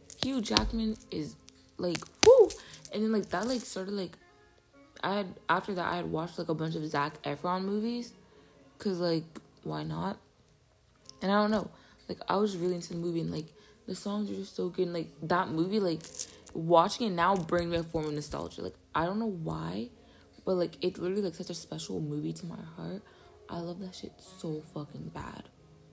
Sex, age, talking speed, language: female, 20-39, 200 wpm, English